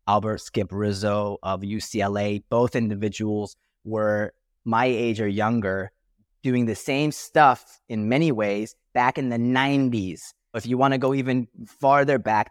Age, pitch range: 30-49, 105-130 Hz